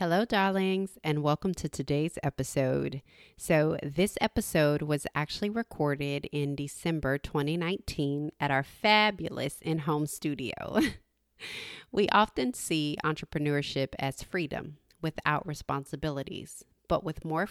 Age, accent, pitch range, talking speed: 30-49, American, 145-170 Hz, 110 wpm